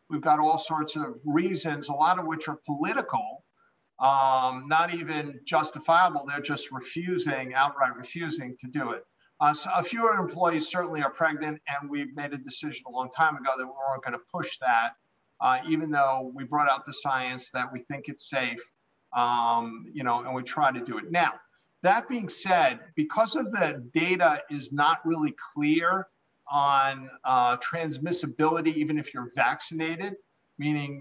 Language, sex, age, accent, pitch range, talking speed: English, male, 50-69, American, 135-165 Hz, 170 wpm